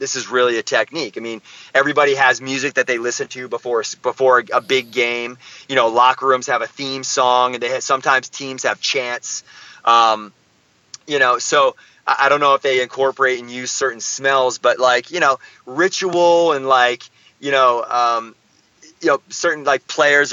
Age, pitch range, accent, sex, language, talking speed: 30-49, 120-140 Hz, American, male, English, 190 wpm